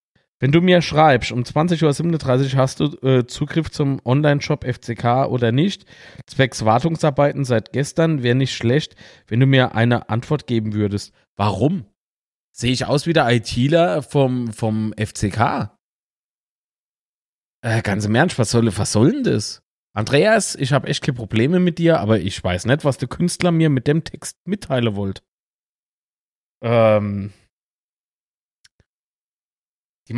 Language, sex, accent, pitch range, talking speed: German, male, German, 110-150 Hz, 145 wpm